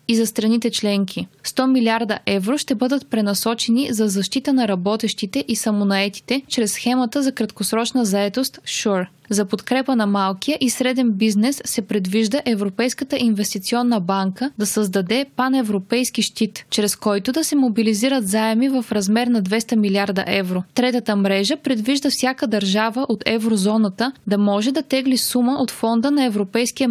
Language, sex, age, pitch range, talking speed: Bulgarian, female, 20-39, 210-250 Hz, 145 wpm